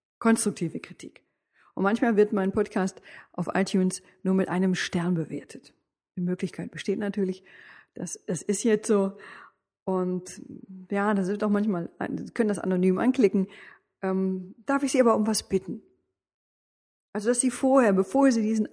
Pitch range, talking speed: 190-245 Hz, 155 wpm